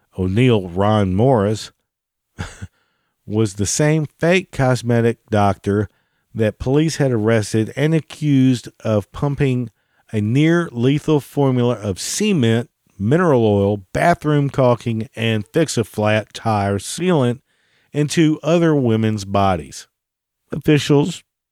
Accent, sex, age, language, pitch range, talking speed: American, male, 50-69, English, 100-130 Hz, 105 wpm